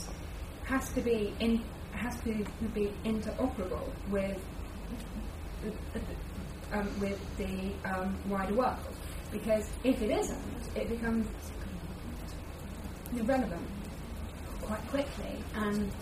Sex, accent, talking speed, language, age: female, British, 95 wpm, English, 20-39